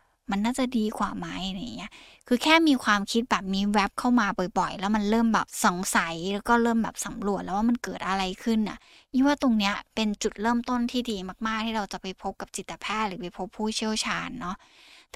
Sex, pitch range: female, 195-235 Hz